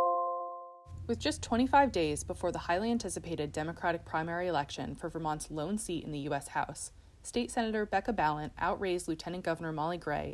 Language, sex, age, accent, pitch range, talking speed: English, female, 20-39, American, 155-195 Hz, 165 wpm